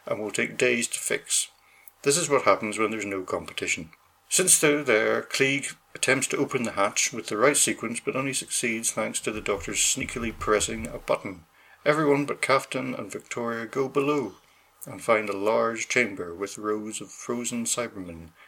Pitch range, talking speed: 110-145 Hz, 180 wpm